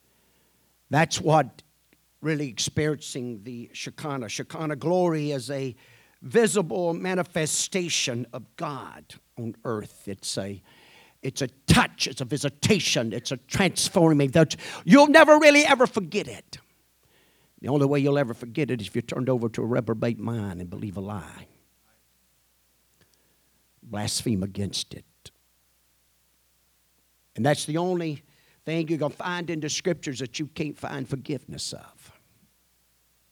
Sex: male